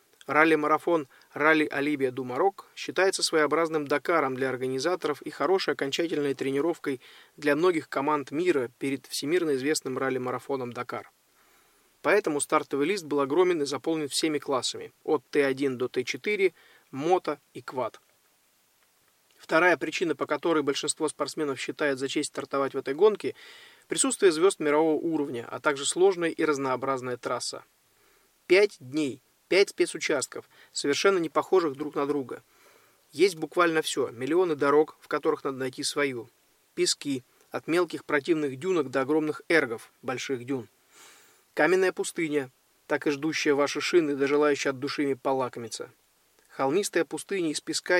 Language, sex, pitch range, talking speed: Russian, male, 140-200 Hz, 135 wpm